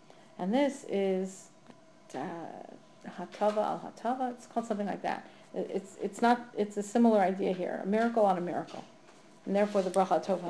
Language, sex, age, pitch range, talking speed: English, female, 40-59, 185-215 Hz, 170 wpm